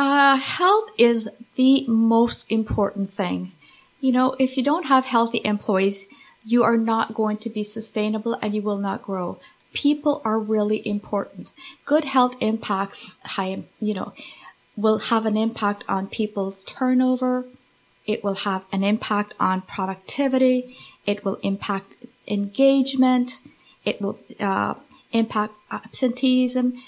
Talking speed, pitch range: 130 wpm, 210-255 Hz